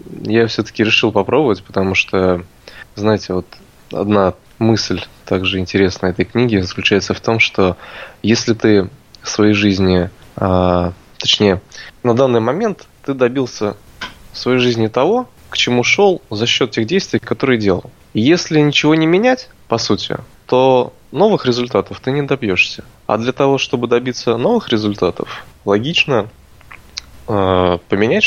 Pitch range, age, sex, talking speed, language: 95-120 Hz, 20-39, male, 135 wpm, Russian